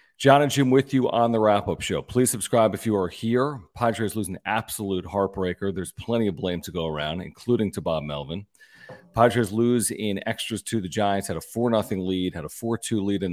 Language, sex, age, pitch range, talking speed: English, male, 40-59, 90-115 Hz, 225 wpm